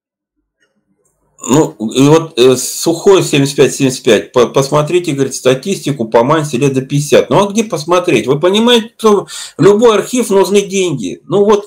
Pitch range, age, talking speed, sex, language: 145-215 Hz, 40-59, 150 wpm, male, Russian